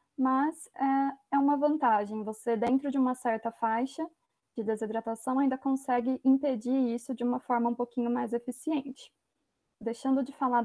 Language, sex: Portuguese, female